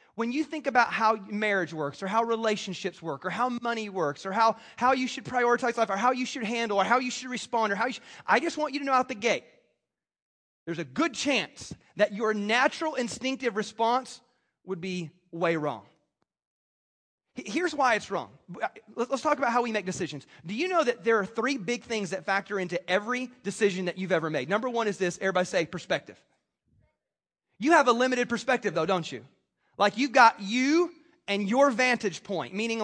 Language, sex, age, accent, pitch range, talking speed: English, male, 30-49, American, 200-250 Hz, 205 wpm